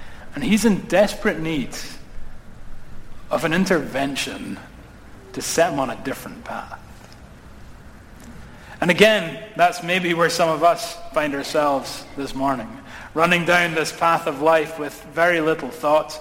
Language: English